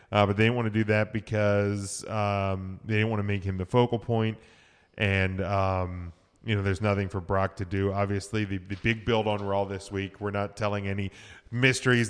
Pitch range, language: 100-115 Hz, English